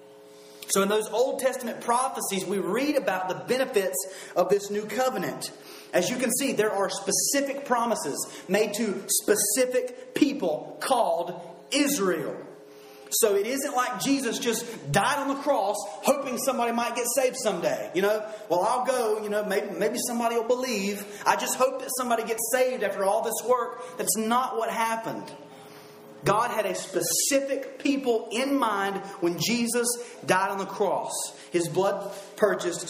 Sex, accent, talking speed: male, American, 160 wpm